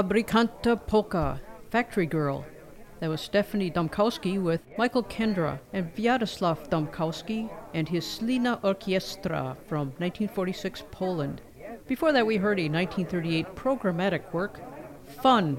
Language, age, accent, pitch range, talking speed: English, 50-69, American, 165-215 Hz, 115 wpm